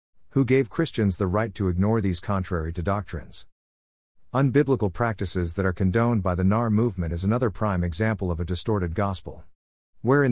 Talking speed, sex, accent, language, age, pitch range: 175 wpm, male, American, English, 50-69, 90-115 Hz